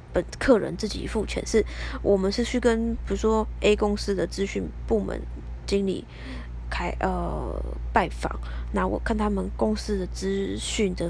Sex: female